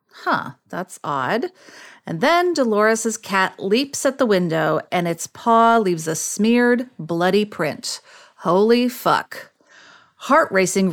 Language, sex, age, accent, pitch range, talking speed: English, female, 40-59, American, 185-255 Hz, 125 wpm